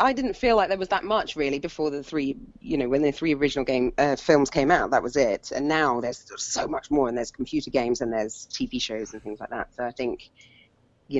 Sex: female